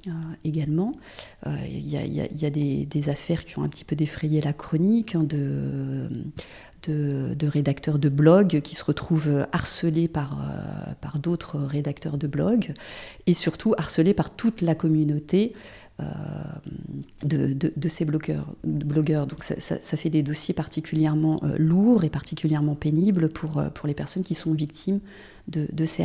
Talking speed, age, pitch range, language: 180 wpm, 40-59, 150-185 Hz, French